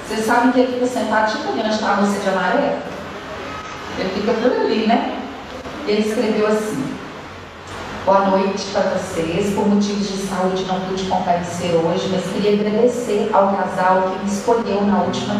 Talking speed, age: 170 wpm, 40-59